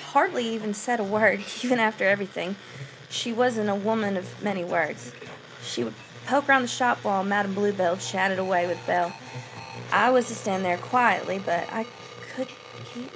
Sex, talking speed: female, 175 wpm